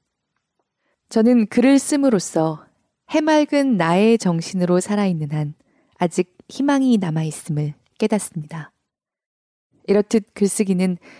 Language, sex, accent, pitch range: Korean, female, native, 165-225 Hz